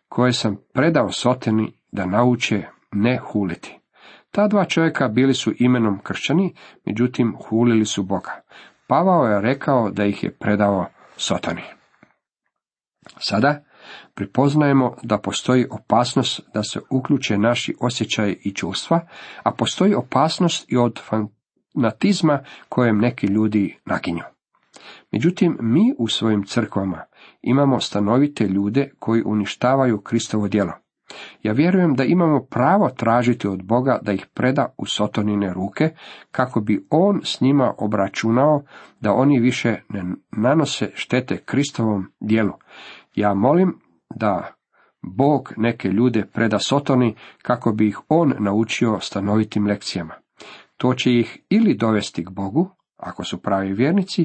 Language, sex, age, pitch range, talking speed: Croatian, male, 50-69, 105-140 Hz, 125 wpm